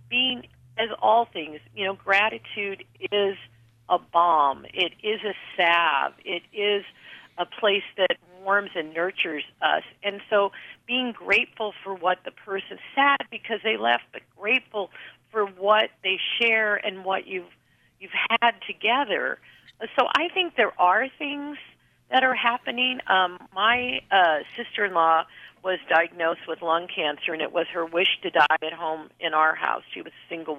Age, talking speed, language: 50-69, 165 wpm, English